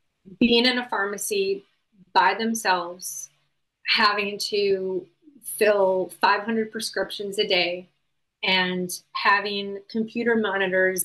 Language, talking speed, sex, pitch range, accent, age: English, 90 wpm, female, 190-225 Hz, American, 30-49